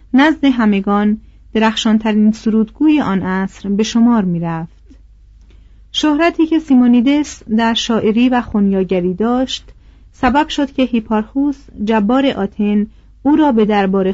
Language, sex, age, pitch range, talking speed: Persian, female, 40-59, 210-265 Hz, 115 wpm